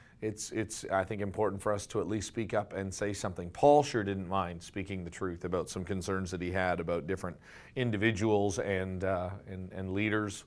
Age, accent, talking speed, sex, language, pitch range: 40-59, American, 205 wpm, male, English, 95-110 Hz